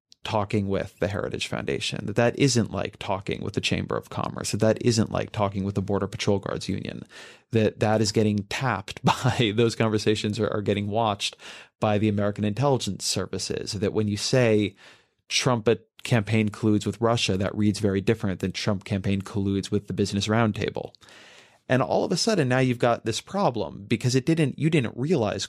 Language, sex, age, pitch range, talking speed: English, male, 30-49, 100-120 Hz, 190 wpm